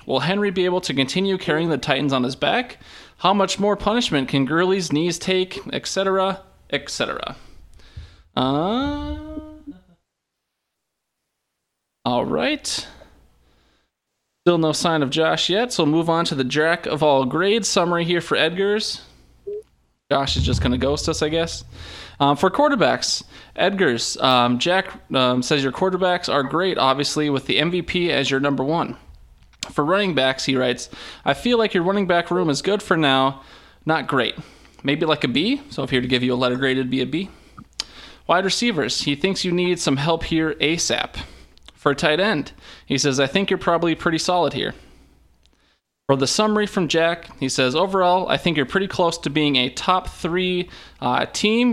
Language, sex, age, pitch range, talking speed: English, male, 20-39, 135-185 Hz, 175 wpm